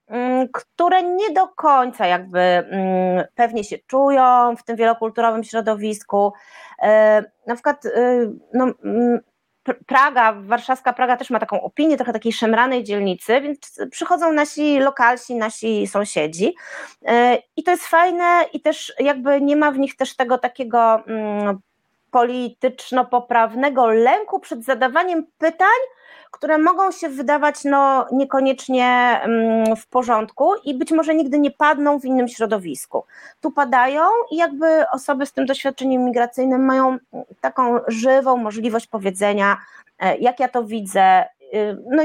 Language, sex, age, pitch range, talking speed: Polish, female, 30-49, 225-285 Hz, 125 wpm